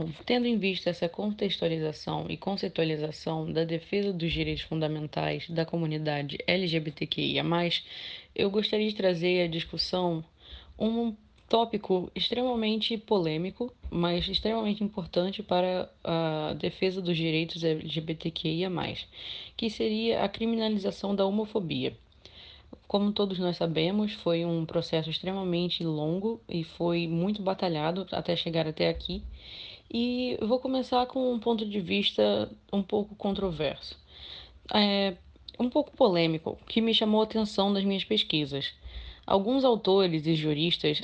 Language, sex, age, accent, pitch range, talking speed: Portuguese, female, 20-39, Brazilian, 160-210 Hz, 125 wpm